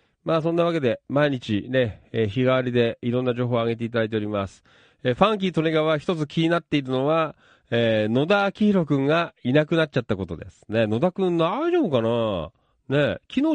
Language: Japanese